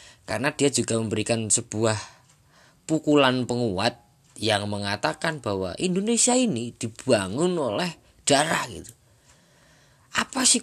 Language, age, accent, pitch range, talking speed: Indonesian, 20-39, native, 110-155 Hz, 100 wpm